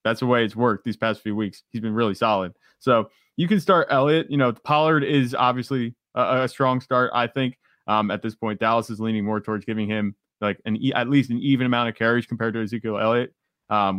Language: English